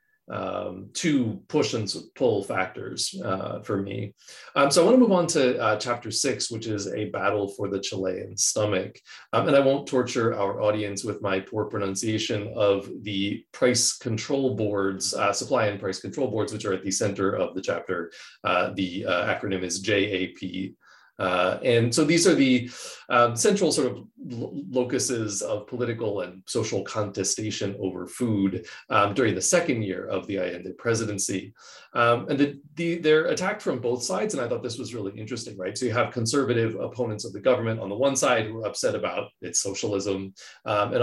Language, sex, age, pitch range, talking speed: English, male, 30-49, 105-140 Hz, 190 wpm